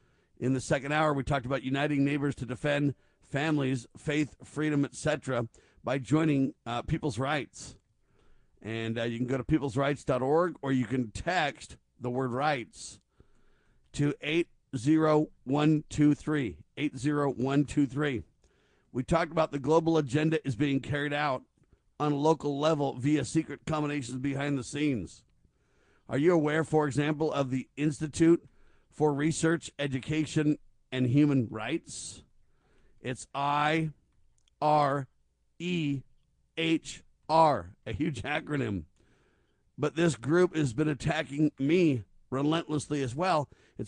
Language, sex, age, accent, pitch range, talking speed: English, male, 50-69, American, 130-155 Hz, 125 wpm